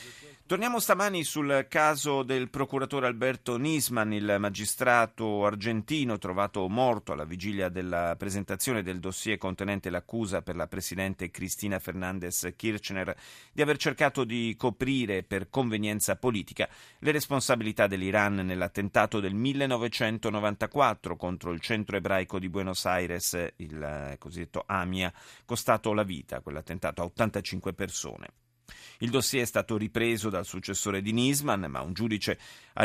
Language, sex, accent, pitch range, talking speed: Italian, male, native, 95-130 Hz, 130 wpm